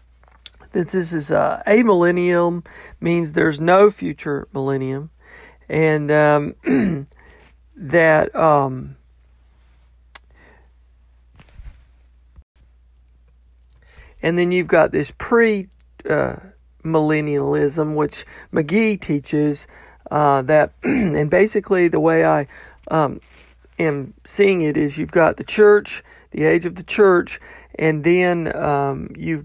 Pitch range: 140-180 Hz